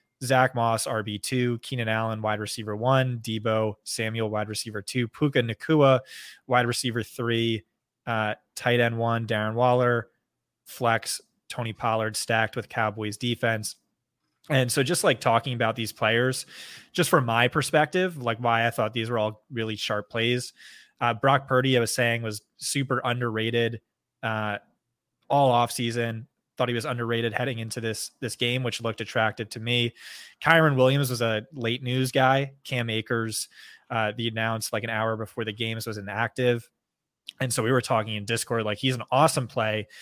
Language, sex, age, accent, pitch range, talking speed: English, male, 20-39, American, 110-125 Hz, 170 wpm